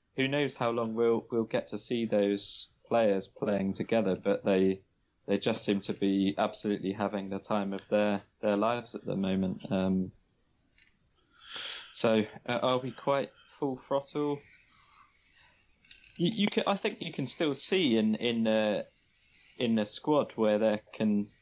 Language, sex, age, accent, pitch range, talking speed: English, male, 20-39, British, 100-115 Hz, 160 wpm